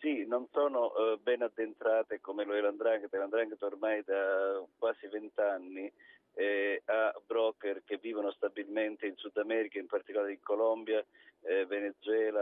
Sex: male